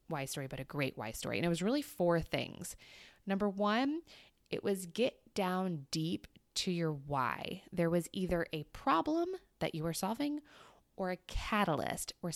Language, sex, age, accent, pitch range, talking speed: English, female, 20-39, American, 155-200 Hz, 175 wpm